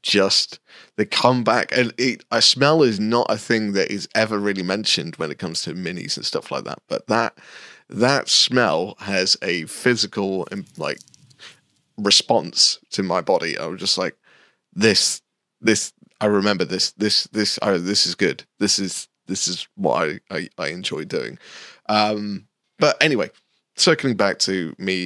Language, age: English, 20-39